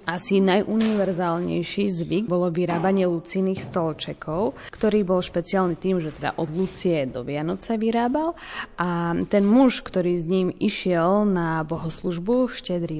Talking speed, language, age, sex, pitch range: 135 wpm, Slovak, 20-39, female, 170-205 Hz